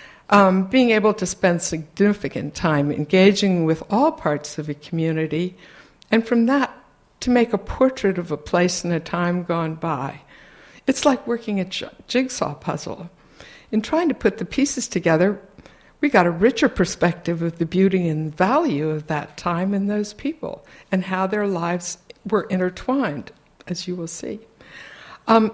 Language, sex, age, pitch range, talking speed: English, female, 60-79, 170-225 Hz, 160 wpm